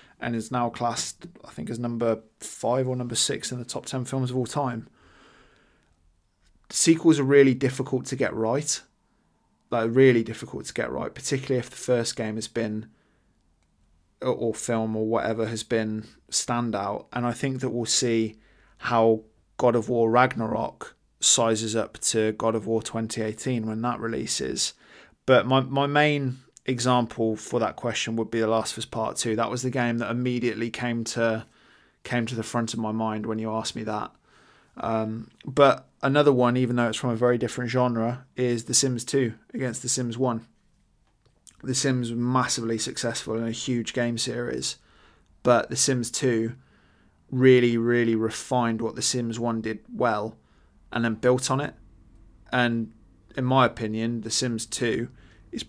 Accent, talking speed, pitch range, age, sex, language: British, 170 wpm, 110-125 Hz, 20-39, male, English